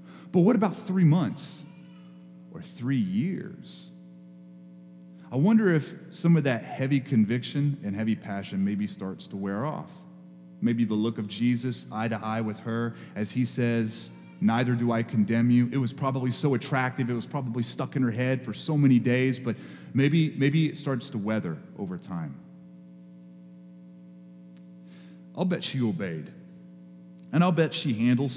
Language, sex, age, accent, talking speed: English, male, 30-49, American, 160 wpm